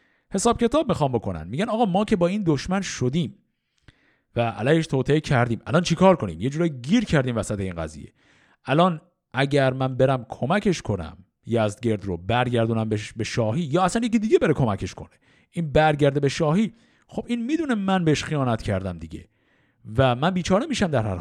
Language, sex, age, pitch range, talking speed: Persian, male, 50-69, 120-200 Hz, 180 wpm